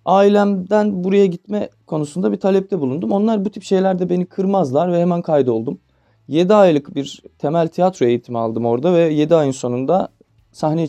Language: Turkish